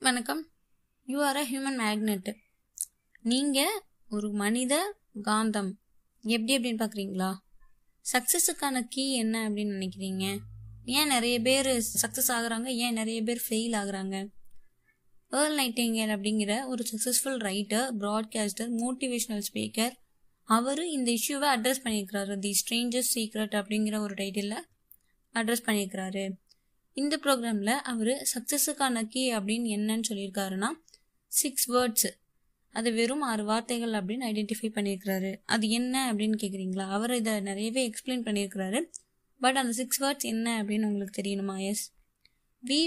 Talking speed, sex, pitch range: 120 wpm, female, 205-255 Hz